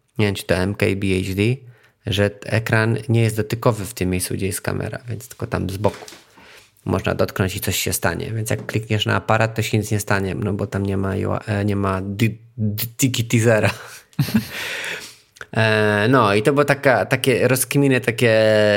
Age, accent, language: 20-39, native, Polish